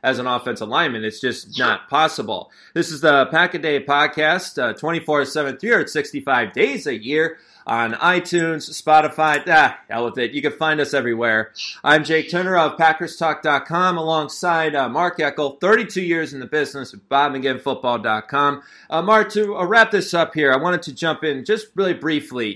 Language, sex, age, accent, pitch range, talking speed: English, male, 30-49, American, 135-175 Hz, 160 wpm